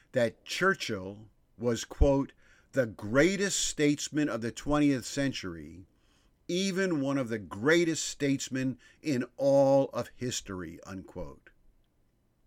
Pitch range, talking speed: 110-145 Hz, 105 wpm